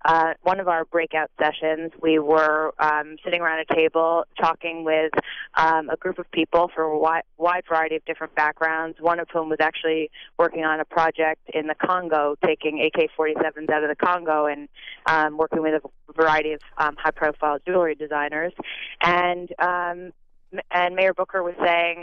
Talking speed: 185 wpm